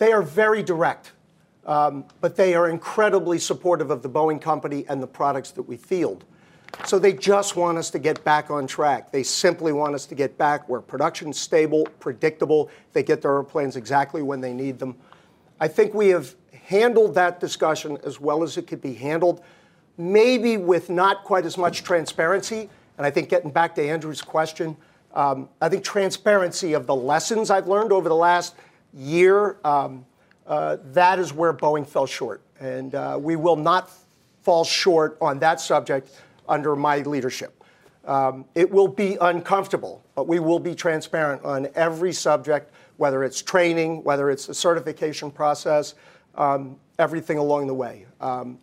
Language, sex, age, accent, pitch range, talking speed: English, male, 40-59, American, 145-180 Hz, 175 wpm